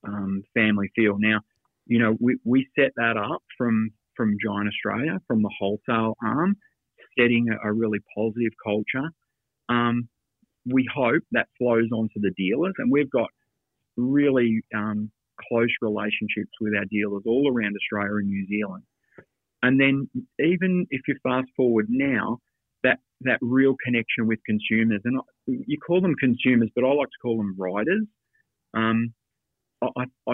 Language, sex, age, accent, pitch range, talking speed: English, male, 40-59, Australian, 110-130 Hz, 150 wpm